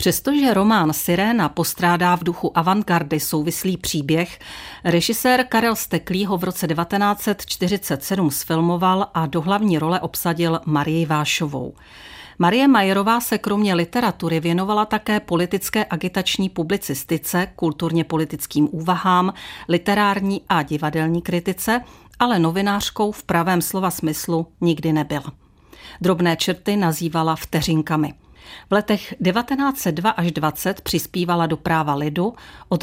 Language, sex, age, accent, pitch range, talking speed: Czech, female, 40-59, native, 160-195 Hz, 115 wpm